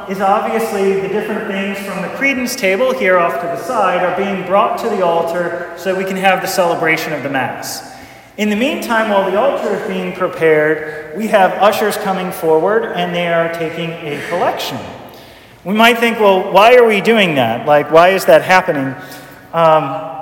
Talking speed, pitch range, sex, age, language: 190 wpm, 175-220 Hz, male, 40-59, English